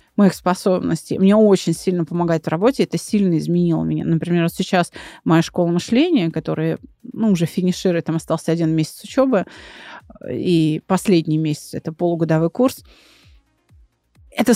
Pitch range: 170-225 Hz